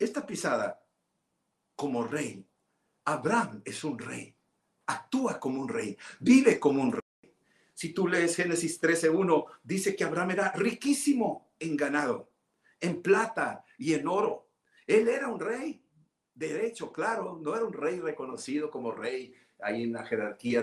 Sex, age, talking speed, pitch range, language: male, 60-79, 145 wpm, 145-235 Hz, Spanish